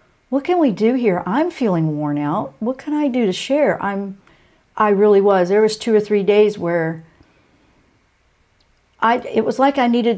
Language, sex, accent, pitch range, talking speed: English, female, American, 175-230 Hz, 190 wpm